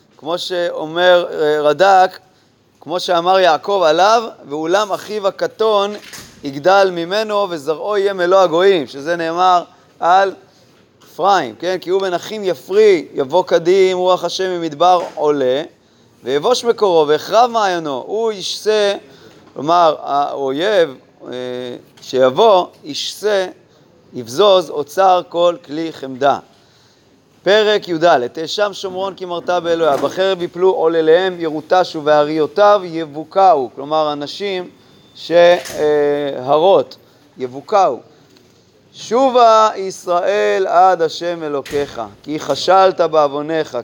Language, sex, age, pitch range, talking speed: Hebrew, male, 30-49, 145-190 Hz, 95 wpm